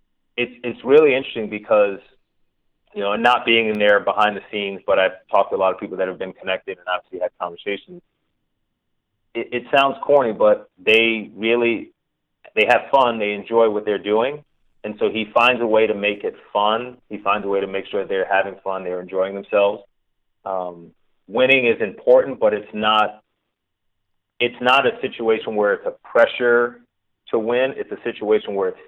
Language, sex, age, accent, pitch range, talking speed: English, male, 30-49, American, 100-130 Hz, 185 wpm